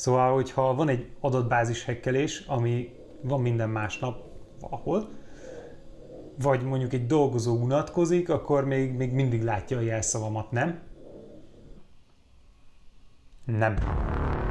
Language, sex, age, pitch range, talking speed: Hungarian, male, 30-49, 120-145 Hz, 105 wpm